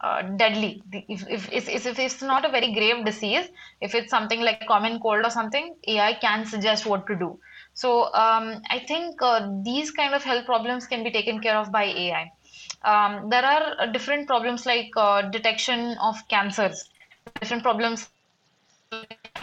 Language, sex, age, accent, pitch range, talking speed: English, female, 20-39, Indian, 210-245 Hz, 175 wpm